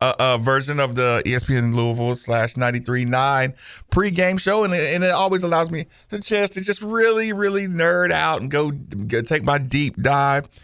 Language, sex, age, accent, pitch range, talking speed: English, male, 50-69, American, 115-175 Hz, 185 wpm